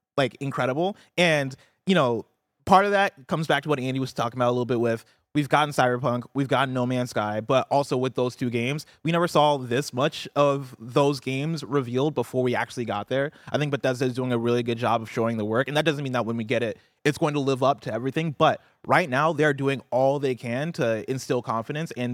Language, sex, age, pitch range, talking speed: English, male, 20-39, 120-145 Hz, 240 wpm